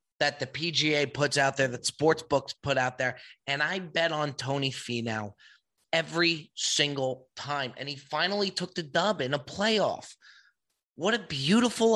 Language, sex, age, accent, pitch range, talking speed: English, male, 30-49, American, 135-180 Hz, 165 wpm